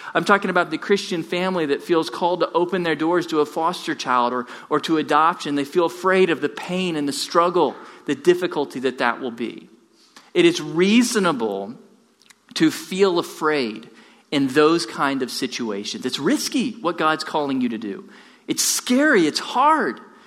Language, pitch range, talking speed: English, 135-205 Hz, 175 wpm